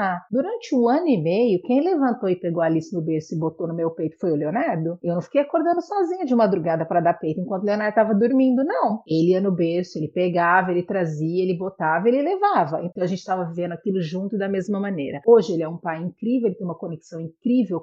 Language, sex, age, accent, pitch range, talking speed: Portuguese, female, 40-59, Brazilian, 175-245 Hz, 235 wpm